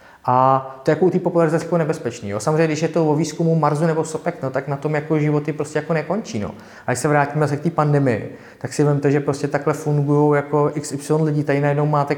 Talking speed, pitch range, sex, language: 230 wpm, 145-175 Hz, male, Czech